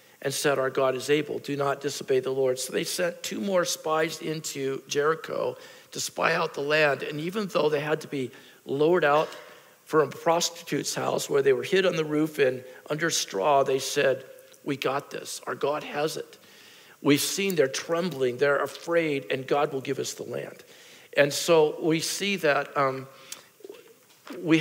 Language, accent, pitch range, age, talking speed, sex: English, American, 140-180 Hz, 50-69, 185 wpm, male